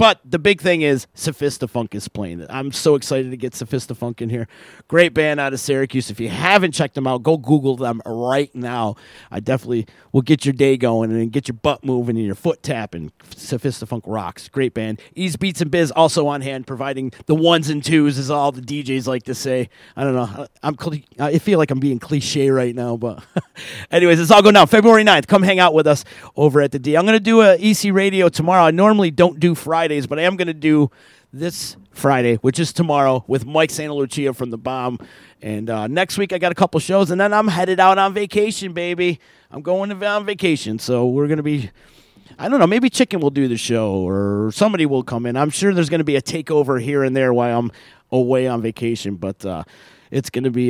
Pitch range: 120-165 Hz